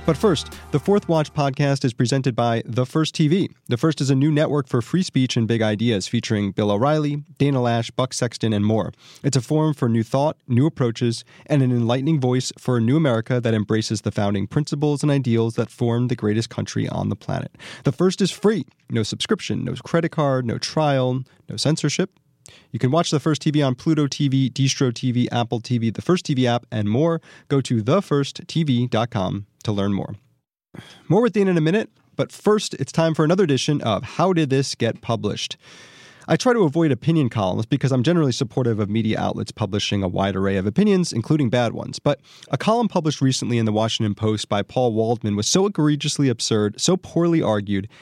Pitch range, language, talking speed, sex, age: 115-155 Hz, English, 200 wpm, male, 30-49